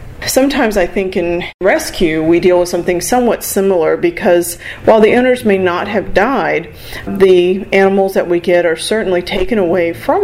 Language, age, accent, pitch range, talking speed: English, 40-59, American, 175-220 Hz, 170 wpm